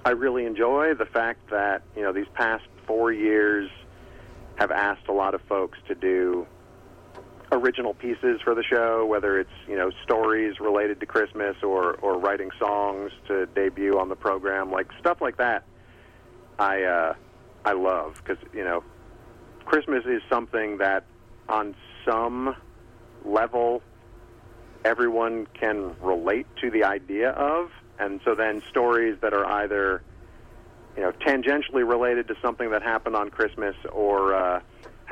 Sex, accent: male, American